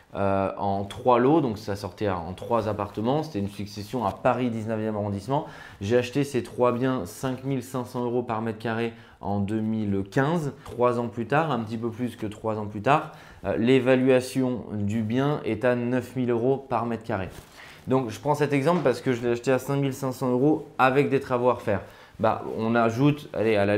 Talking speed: 190 wpm